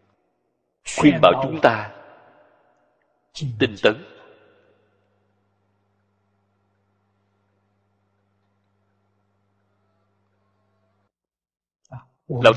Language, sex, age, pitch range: Vietnamese, male, 60-79, 100-130 Hz